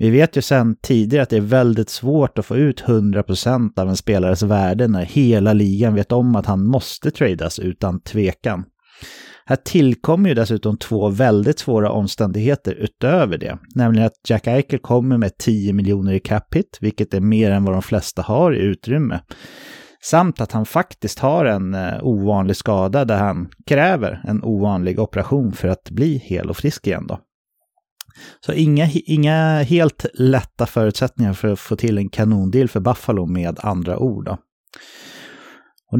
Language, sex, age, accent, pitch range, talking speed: English, male, 30-49, Swedish, 100-130 Hz, 170 wpm